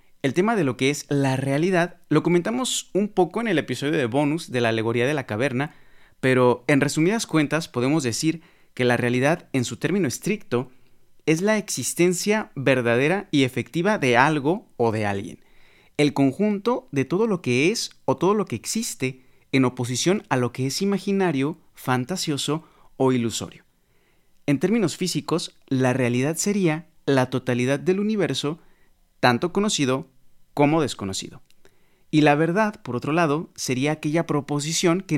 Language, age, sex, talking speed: Spanish, 30-49, male, 160 wpm